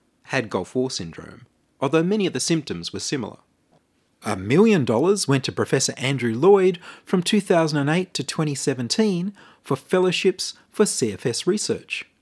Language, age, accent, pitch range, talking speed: English, 30-49, Australian, 125-175 Hz, 135 wpm